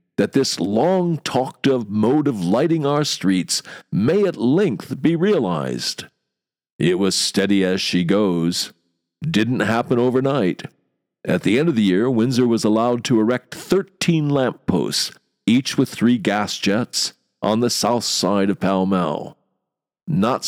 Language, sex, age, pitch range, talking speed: English, male, 50-69, 100-145 Hz, 150 wpm